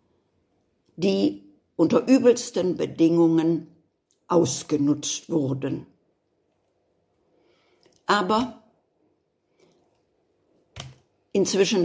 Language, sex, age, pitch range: English, female, 60-79, 160-220 Hz